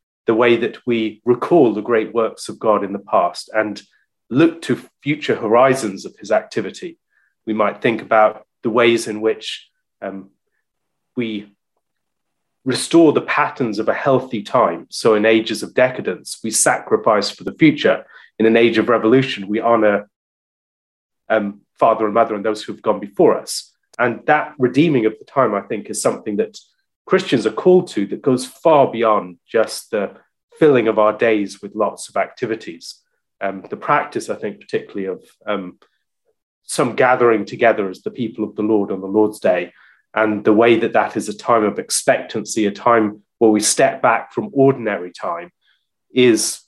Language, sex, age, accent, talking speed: English, male, 30-49, British, 175 wpm